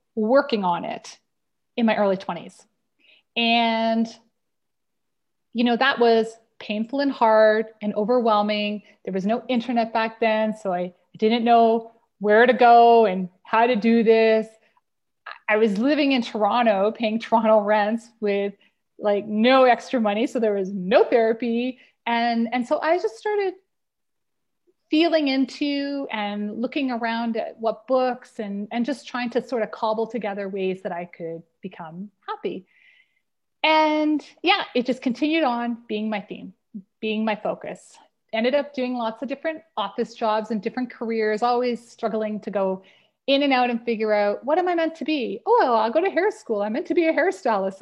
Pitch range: 215-265 Hz